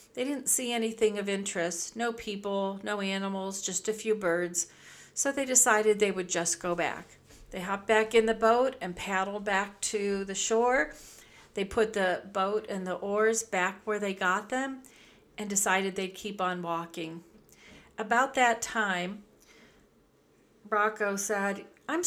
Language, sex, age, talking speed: English, female, 40-59, 160 wpm